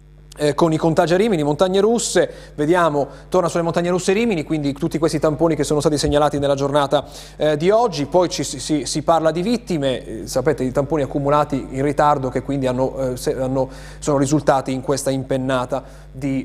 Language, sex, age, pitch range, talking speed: Italian, male, 30-49, 130-170 Hz, 190 wpm